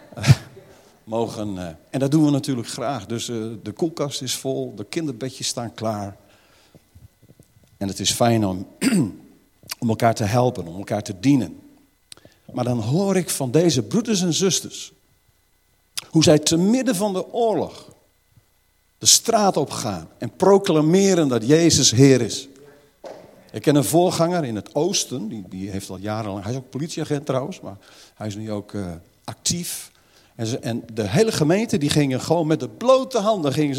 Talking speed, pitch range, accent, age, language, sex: 160 wpm, 115-175 Hz, Dutch, 50-69, Dutch, male